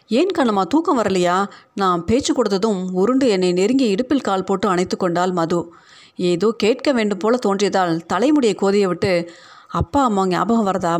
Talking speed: 155 wpm